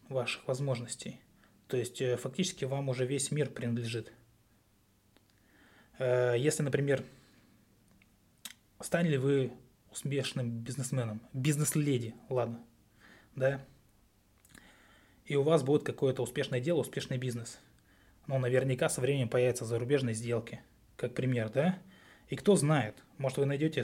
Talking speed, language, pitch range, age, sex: 115 wpm, Russian, 115-145 Hz, 20-39, male